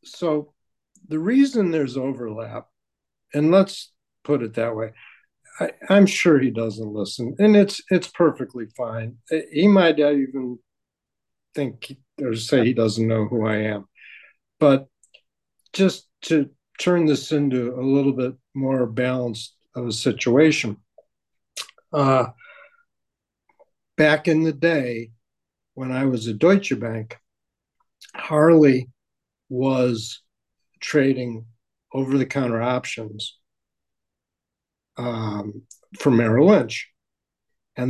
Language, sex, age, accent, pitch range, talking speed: English, male, 60-79, American, 115-150 Hz, 110 wpm